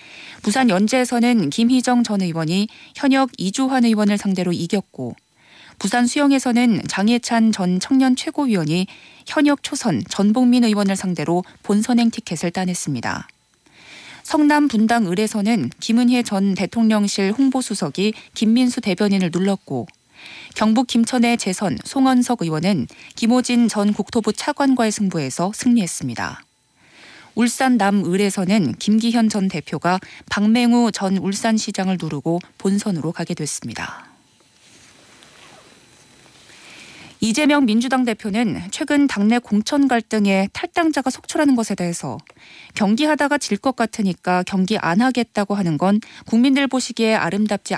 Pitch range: 185-245 Hz